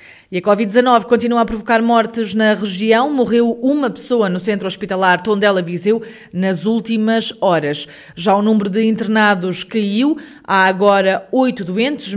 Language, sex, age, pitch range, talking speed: Portuguese, female, 20-39, 185-225 Hz, 150 wpm